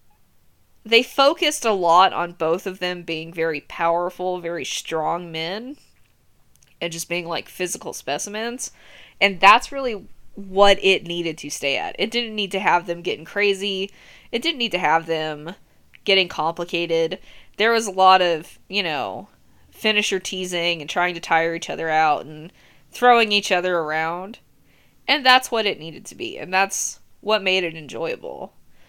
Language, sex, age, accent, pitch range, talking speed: English, female, 20-39, American, 165-215 Hz, 165 wpm